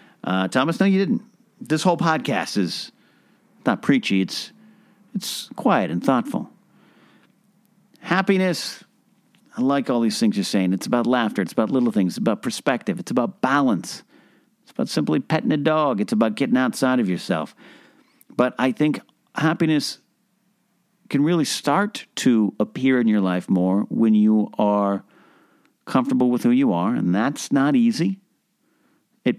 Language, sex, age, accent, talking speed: English, male, 50-69, American, 155 wpm